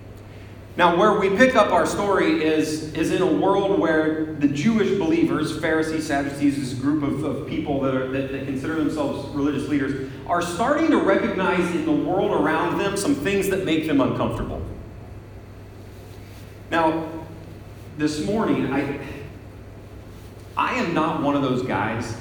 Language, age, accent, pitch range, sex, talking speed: English, 30-49, American, 105-145 Hz, male, 155 wpm